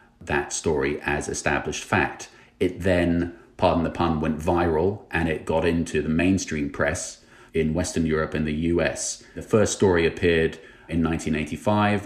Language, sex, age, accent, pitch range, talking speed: English, male, 30-49, British, 80-90 Hz, 155 wpm